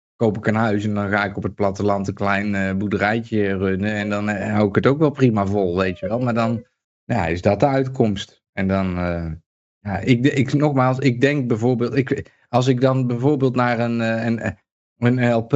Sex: male